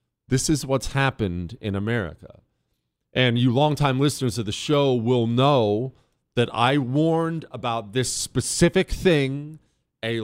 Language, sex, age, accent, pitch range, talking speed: English, male, 40-59, American, 120-170 Hz, 135 wpm